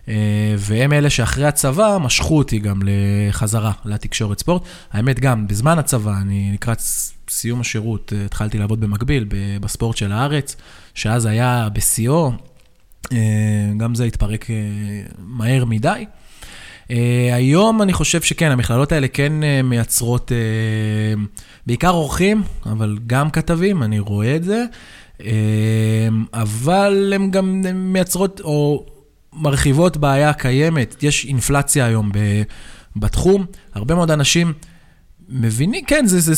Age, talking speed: 20-39, 115 wpm